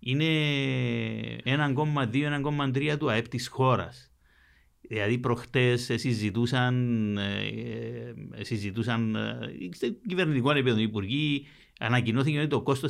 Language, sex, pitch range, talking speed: Greek, male, 110-150 Hz, 80 wpm